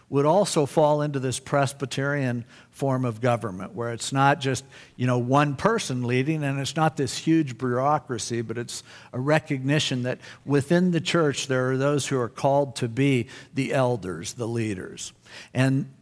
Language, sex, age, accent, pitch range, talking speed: English, male, 60-79, American, 125-150 Hz, 170 wpm